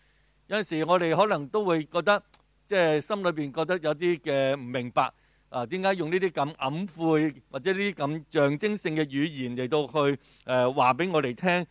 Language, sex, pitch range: Chinese, male, 140-195 Hz